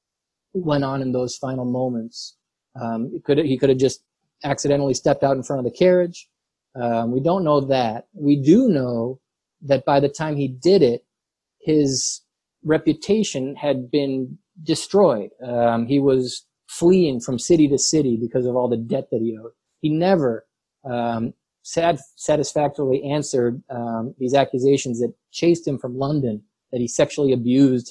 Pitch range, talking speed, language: 125-155 Hz, 160 wpm, English